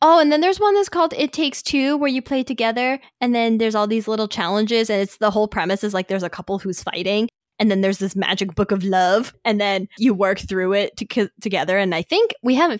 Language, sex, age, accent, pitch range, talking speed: English, female, 10-29, American, 195-280 Hz, 255 wpm